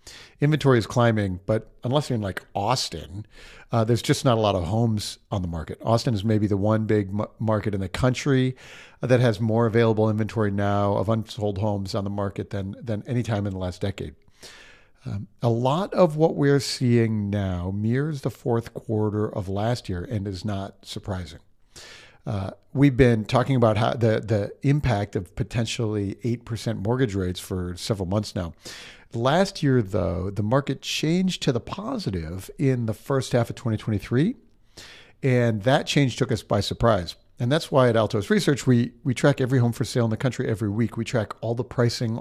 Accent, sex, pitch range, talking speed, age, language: American, male, 105-130 Hz, 185 wpm, 50-69, English